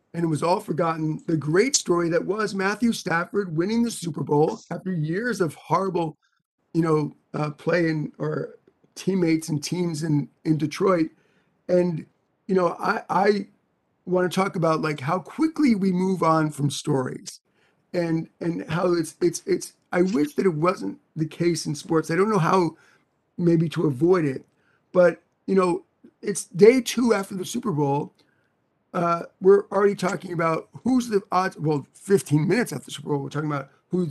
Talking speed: 175 wpm